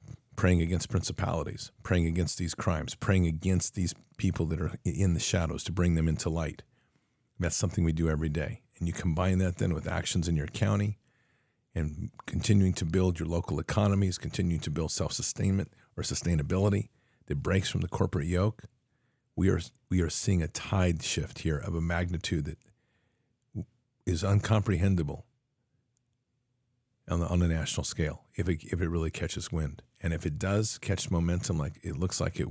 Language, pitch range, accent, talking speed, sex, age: English, 80-110 Hz, American, 175 wpm, male, 50-69